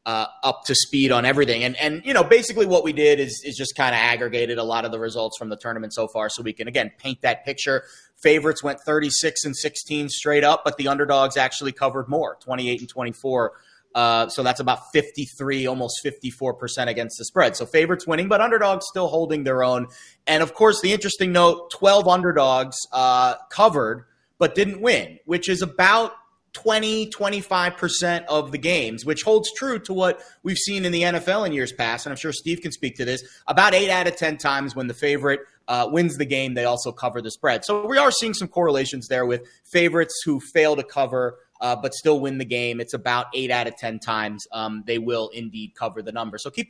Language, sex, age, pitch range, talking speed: English, male, 30-49, 125-170 Hz, 220 wpm